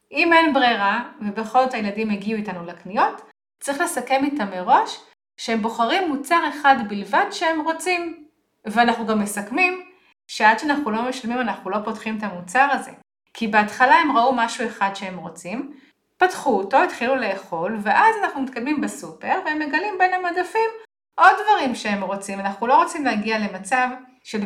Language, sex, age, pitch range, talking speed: Hebrew, female, 30-49, 210-290 Hz, 155 wpm